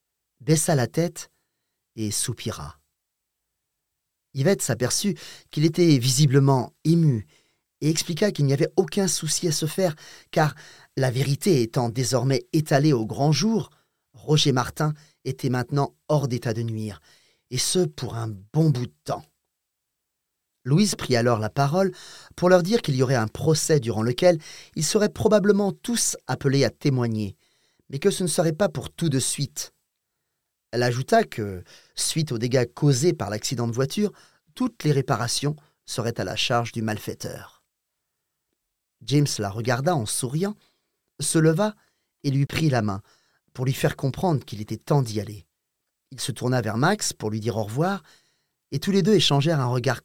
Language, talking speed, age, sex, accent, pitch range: English, 165 wpm, 30-49, male, French, 120-160 Hz